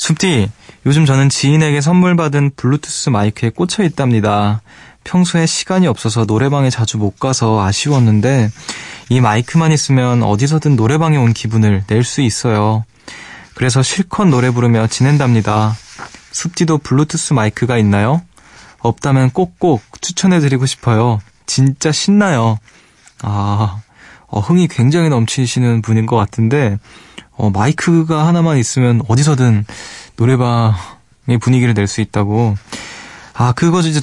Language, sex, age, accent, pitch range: Korean, male, 20-39, native, 110-150 Hz